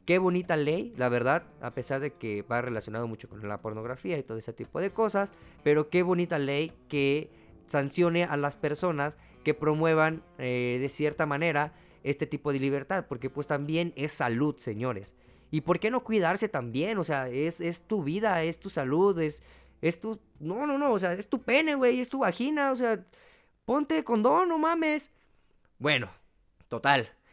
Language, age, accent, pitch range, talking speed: Spanish, 20-39, Mexican, 135-180 Hz, 185 wpm